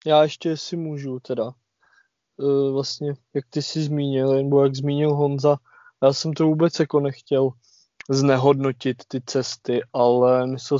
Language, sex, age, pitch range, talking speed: Czech, male, 20-39, 125-145 Hz, 145 wpm